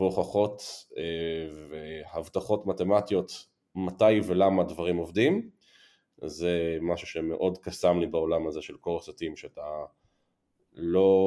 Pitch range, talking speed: 90-110 Hz, 95 wpm